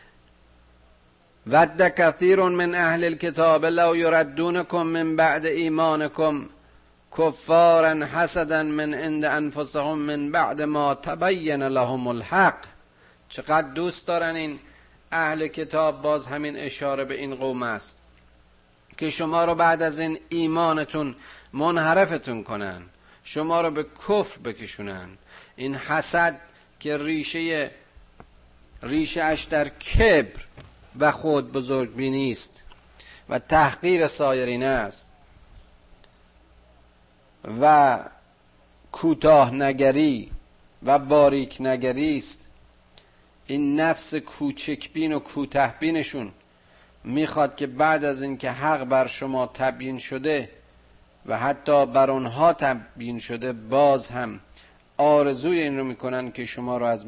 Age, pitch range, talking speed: 50-69, 115-155 Hz, 105 wpm